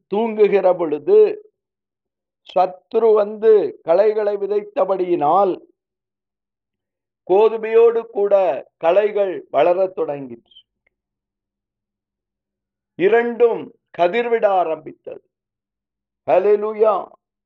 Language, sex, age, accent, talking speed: Tamil, male, 50-69, native, 50 wpm